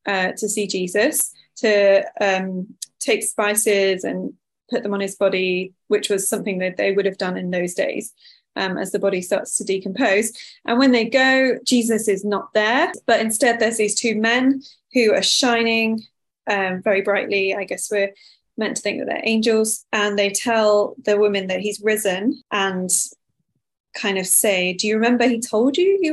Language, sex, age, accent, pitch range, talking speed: English, female, 20-39, British, 195-225 Hz, 185 wpm